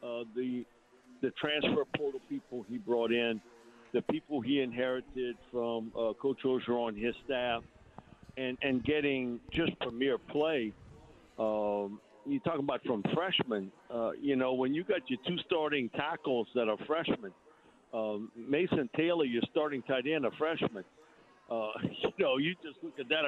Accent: American